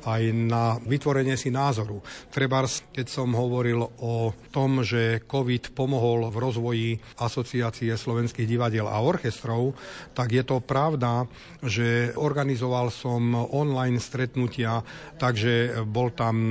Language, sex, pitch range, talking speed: Slovak, male, 115-135 Hz, 120 wpm